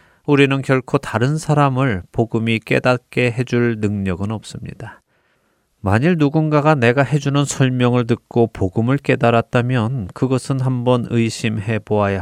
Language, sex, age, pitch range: Korean, male, 30-49, 100-130 Hz